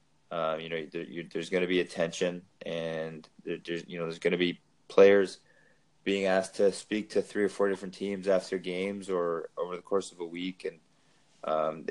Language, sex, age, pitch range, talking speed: English, male, 20-39, 90-100 Hz, 180 wpm